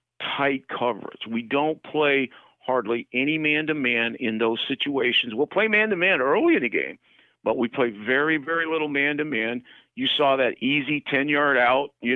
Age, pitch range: 50-69, 125-155 Hz